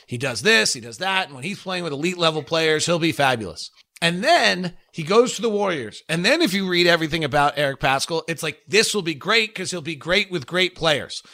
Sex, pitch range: male, 150-185 Hz